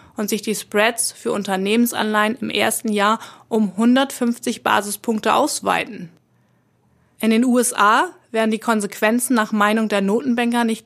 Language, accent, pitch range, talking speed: German, German, 205-240 Hz, 135 wpm